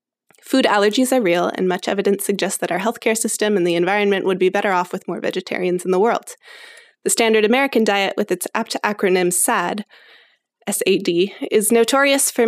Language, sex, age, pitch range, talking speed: English, female, 20-39, 195-235 Hz, 185 wpm